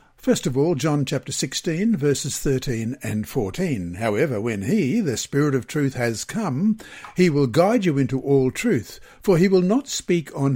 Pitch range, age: 125-170 Hz, 60-79